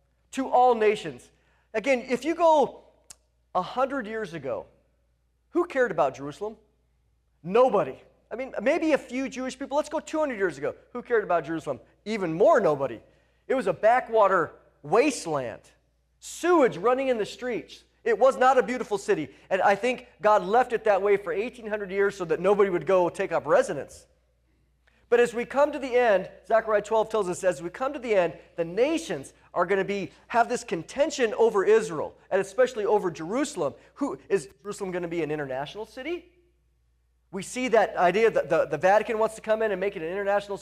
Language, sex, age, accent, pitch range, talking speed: English, male, 40-59, American, 150-250 Hz, 190 wpm